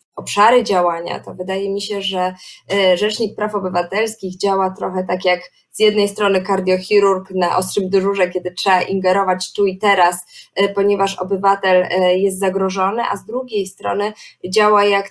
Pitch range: 185-215 Hz